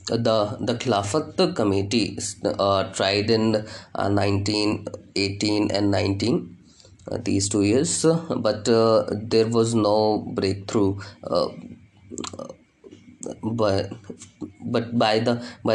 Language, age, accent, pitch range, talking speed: Hindi, 20-39, native, 100-115 Hz, 90 wpm